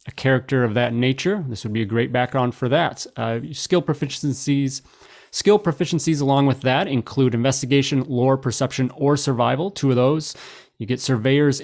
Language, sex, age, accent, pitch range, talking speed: English, male, 30-49, American, 115-140 Hz, 170 wpm